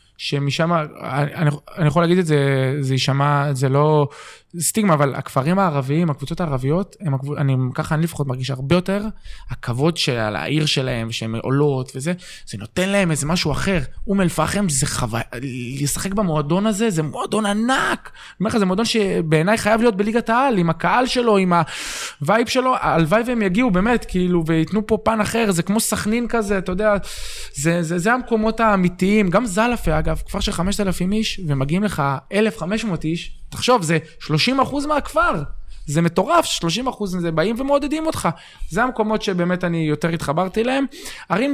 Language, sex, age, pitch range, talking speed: Hebrew, male, 20-39, 145-215 Hz, 160 wpm